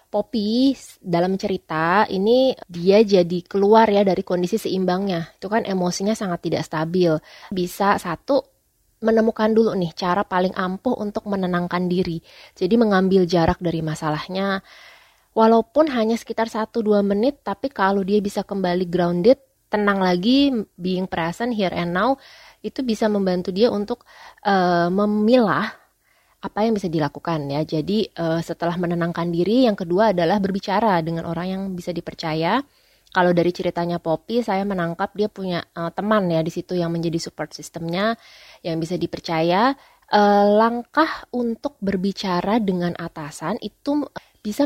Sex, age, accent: female, 20-39, native